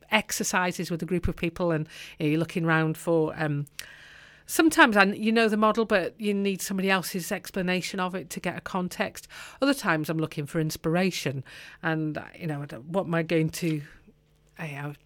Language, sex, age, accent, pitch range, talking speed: English, female, 40-59, British, 160-205 Hz, 180 wpm